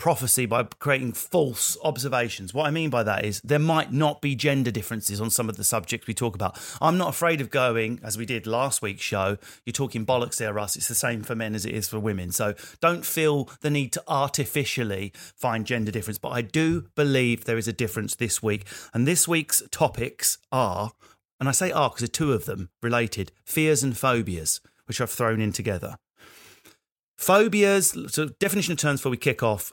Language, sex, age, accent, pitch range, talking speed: English, male, 30-49, British, 110-145 Hz, 210 wpm